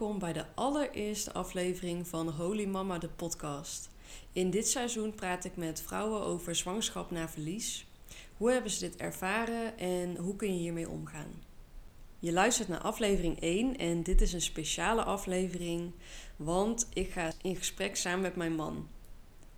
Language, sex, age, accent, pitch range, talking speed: Dutch, female, 20-39, Dutch, 170-205 Hz, 160 wpm